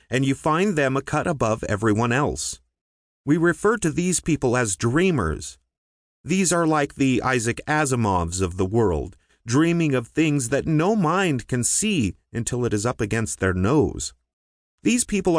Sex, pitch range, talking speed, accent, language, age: male, 95-155 Hz, 165 wpm, American, English, 30-49